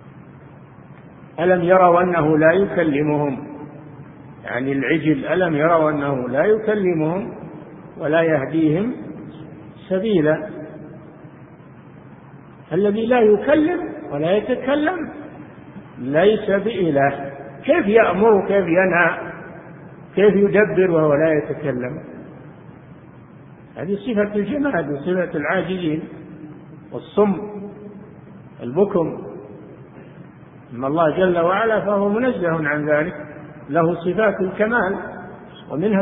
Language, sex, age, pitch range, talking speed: Arabic, male, 50-69, 155-195 Hz, 85 wpm